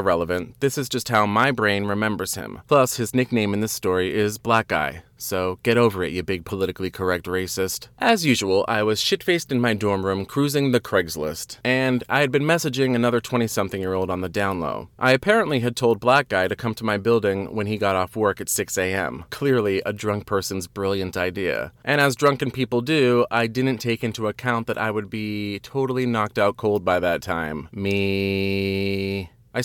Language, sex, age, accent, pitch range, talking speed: English, male, 30-49, American, 95-125 Hz, 200 wpm